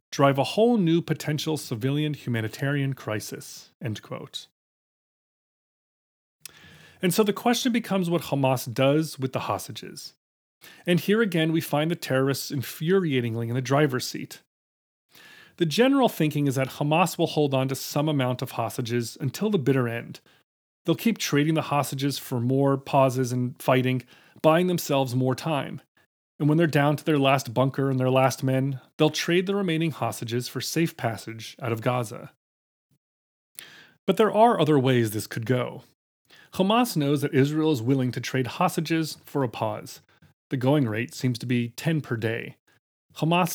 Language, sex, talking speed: English, male, 165 wpm